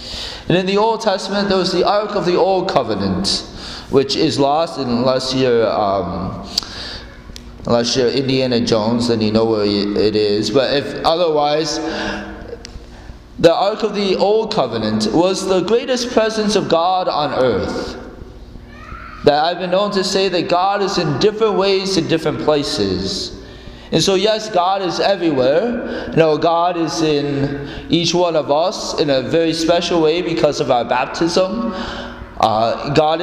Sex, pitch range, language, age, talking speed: male, 130-185 Hz, English, 20-39, 155 wpm